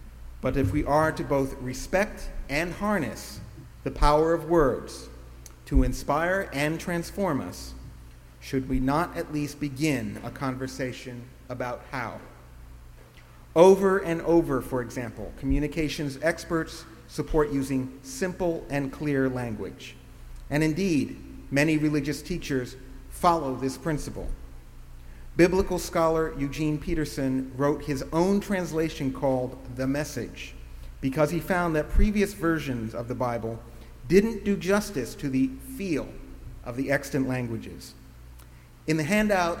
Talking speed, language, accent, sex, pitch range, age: 125 wpm, English, American, male, 120-160 Hz, 50-69